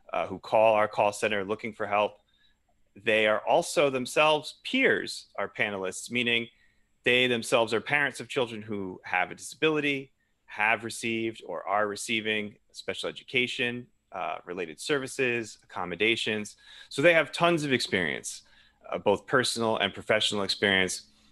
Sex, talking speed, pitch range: male, 140 wpm, 105-135 Hz